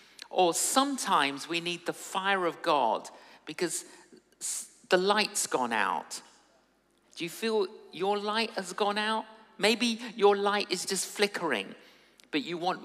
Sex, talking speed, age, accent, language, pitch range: male, 140 wpm, 50-69, British, English, 200-265 Hz